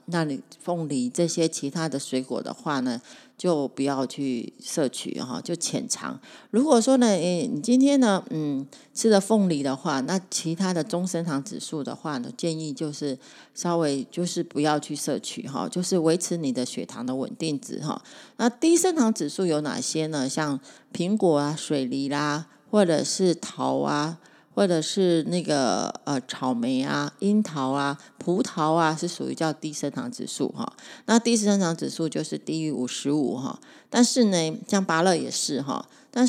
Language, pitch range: Chinese, 150-210 Hz